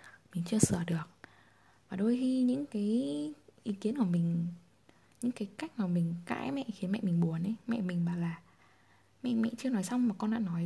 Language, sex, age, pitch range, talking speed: Vietnamese, female, 10-29, 170-225 Hz, 215 wpm